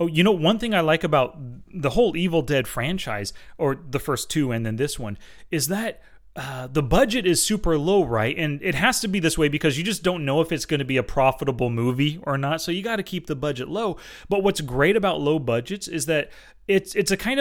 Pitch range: 145-185 Hz